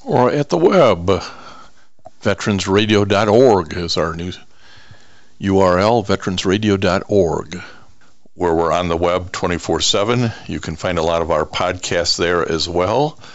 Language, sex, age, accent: English, male, 60-79, American